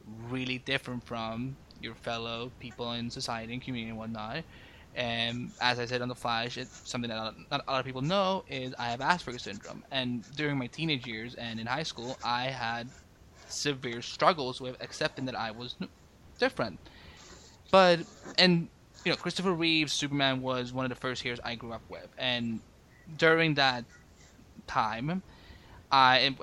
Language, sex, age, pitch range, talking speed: English, male, 20-39, 120-150 Hz, 170 wpm